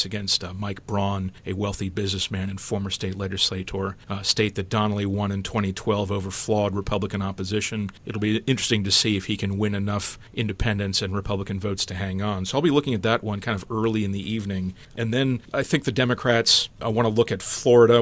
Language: English